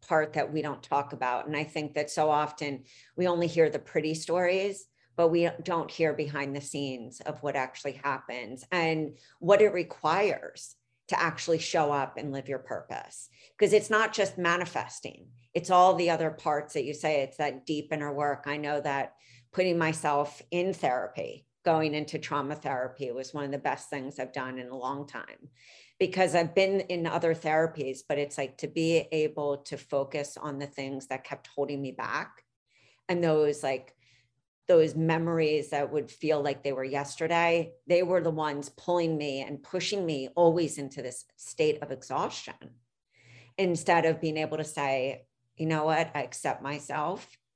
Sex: female